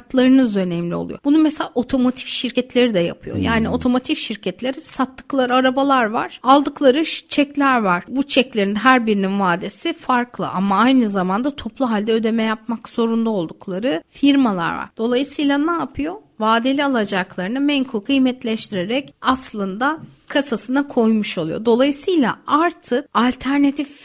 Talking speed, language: 120 wpm, Turkish